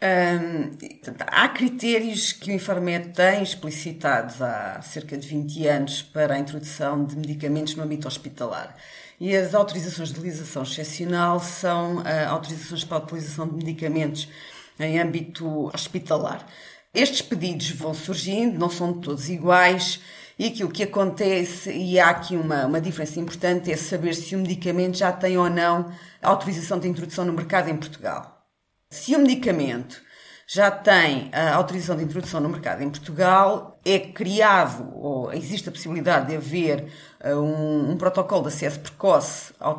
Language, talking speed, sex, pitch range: Portuguese, 155 wpm, female, 150-185 Hz